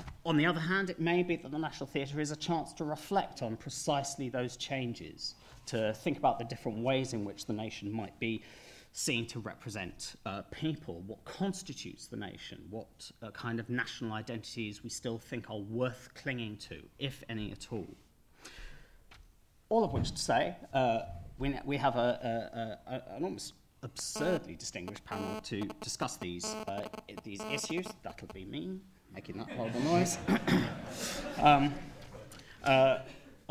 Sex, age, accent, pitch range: male, 40-59, British, 110-140 Hz